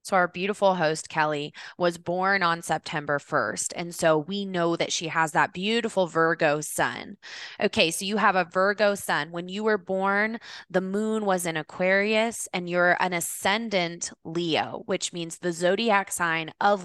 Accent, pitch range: American, 165-200 Hz